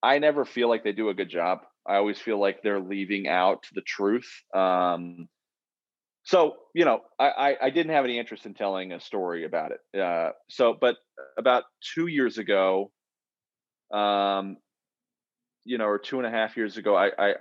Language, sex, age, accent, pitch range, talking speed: English, male, 30-49, American, 95-115 Hz, 185 wpm